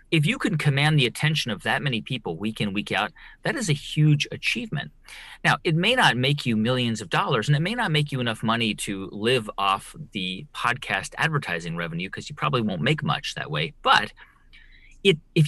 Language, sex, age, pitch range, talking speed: English, male, 30-49, 115-150 Hz, 210 wpm